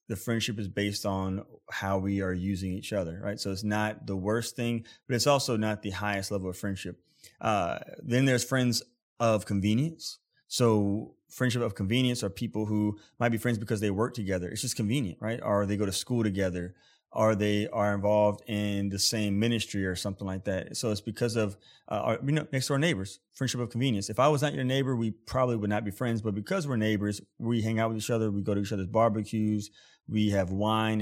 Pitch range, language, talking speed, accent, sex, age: 100-115 Hz, English, 220 wpm, American, male, 20-39